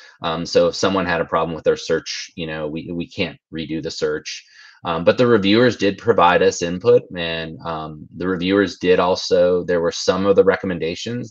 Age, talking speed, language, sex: 30-49, 200 wpm, English, male